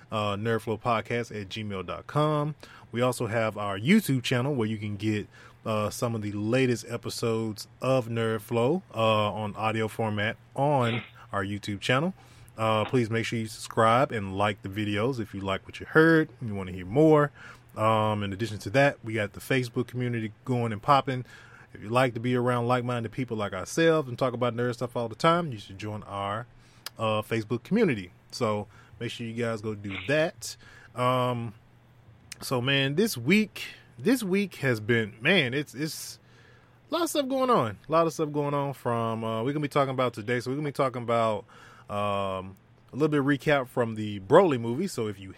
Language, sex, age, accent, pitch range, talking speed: English, male, 20-39, American, 110-135 Hz, 200 wpm